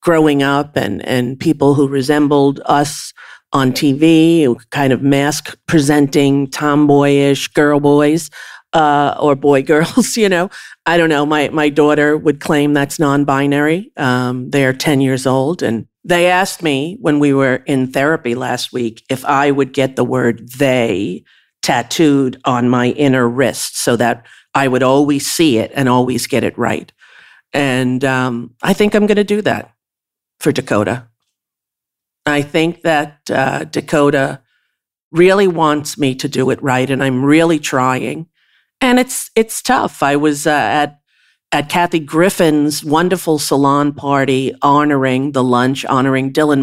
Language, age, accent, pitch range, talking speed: English, 50-69, American, 130-155 Hz, 155 wpm